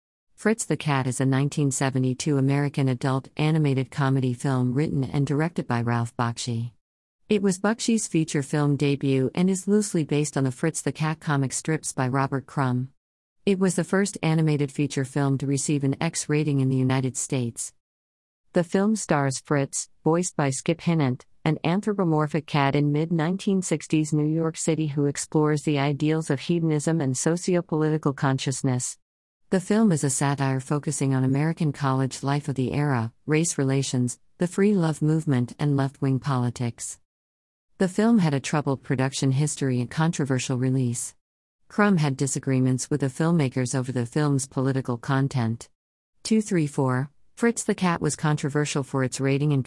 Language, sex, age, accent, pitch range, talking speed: English, female, 50-69, American, 130-160 Hz, 160 wpm